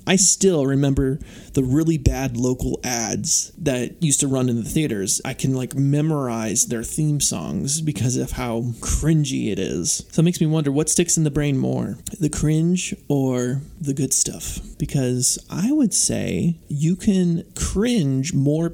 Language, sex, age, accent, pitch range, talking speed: English, male, 30-49, American, 125-160 Hz, 170 wpm